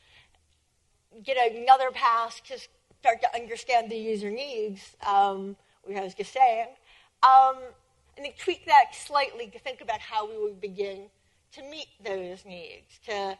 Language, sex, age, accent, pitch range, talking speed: English, female, 40-59, American, 200-300 Hz, 150 wpm